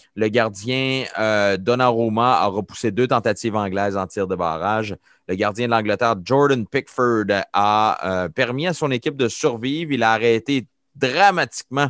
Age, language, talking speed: 30-49, French, 155 wpm